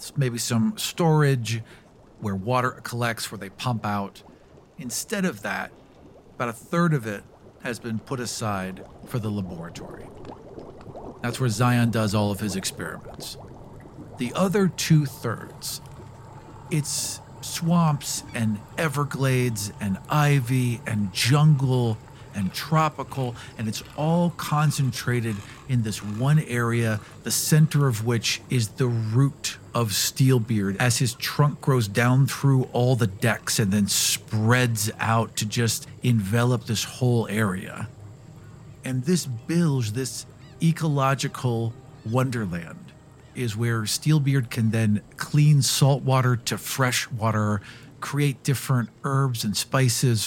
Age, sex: 50-69, male